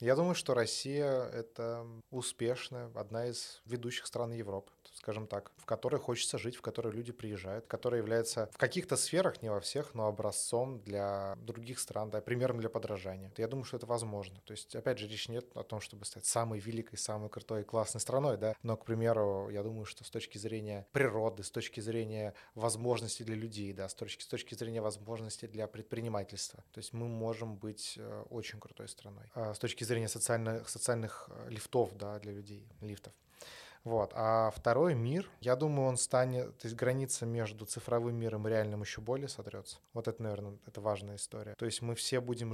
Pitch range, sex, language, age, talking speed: 105-120 Hz, male, Russian, 20-39, 180 wpm